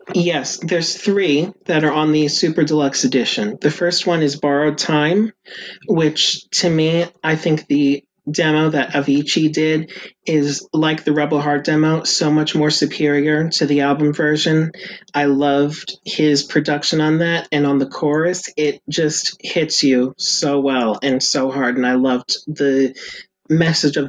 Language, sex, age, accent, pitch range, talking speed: English, male, 40-59, American, 140-160 Hz, 160 wpm